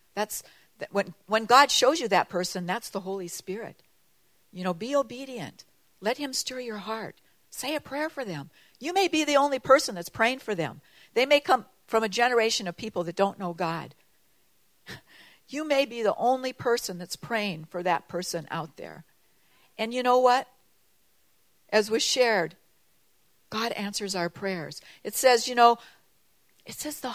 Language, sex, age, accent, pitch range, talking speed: English, female, 60-79, American, 190-245 Hz, 170 wpm